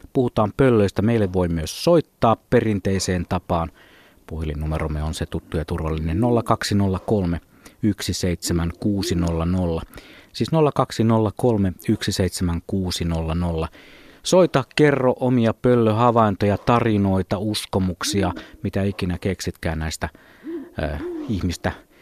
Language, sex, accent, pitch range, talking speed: Finnish, male, native, 85-120 Hz, 85 wpm